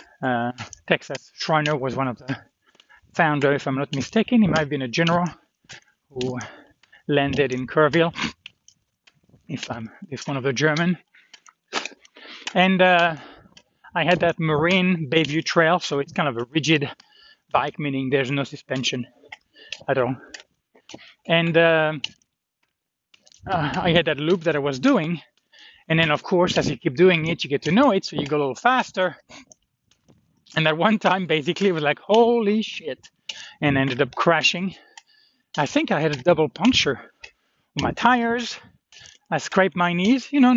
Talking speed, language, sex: 165 wpm, English, male